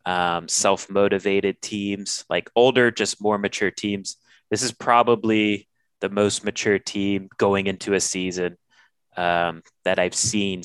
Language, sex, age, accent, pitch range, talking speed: English, male, 30-49, American, 95-110 Hz, 135 wpm